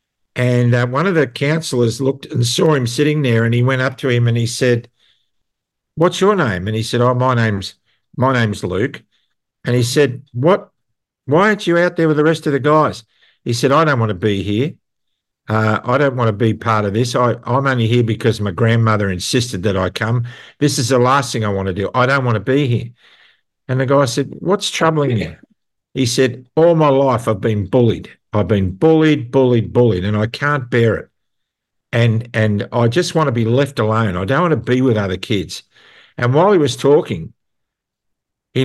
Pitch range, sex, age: 110-140 Hz, male, 60-79